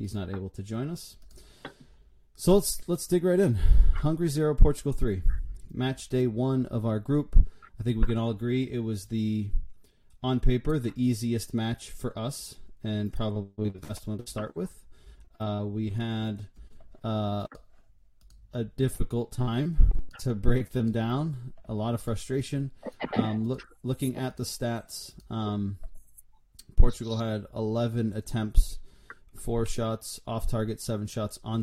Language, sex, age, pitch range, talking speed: English, male, 30-49, 105-125 Hz, 150 wpm